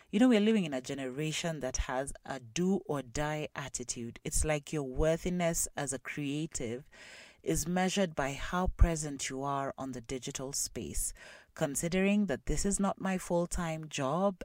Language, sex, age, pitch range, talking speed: English, female, 30-49, 135-190 Hz, 160 wpm